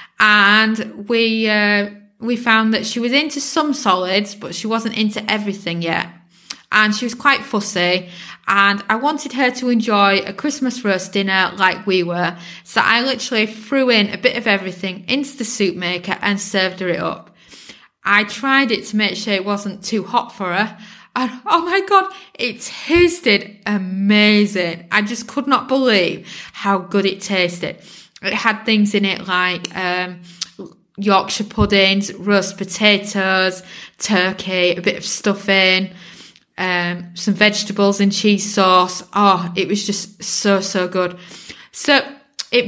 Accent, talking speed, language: British, 155 wpm, English